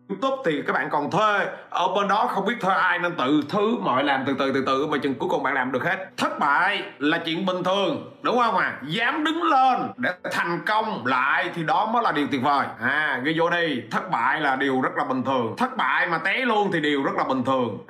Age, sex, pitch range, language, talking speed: 30-49, male, 165-230 Hz, Vietnamese, 260 wpm